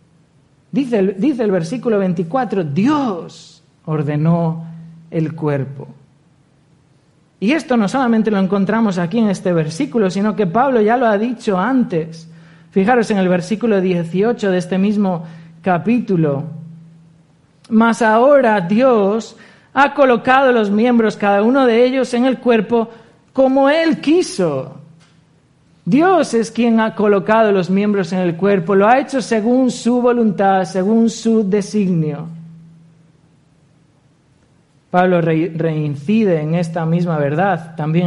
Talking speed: 125 wpm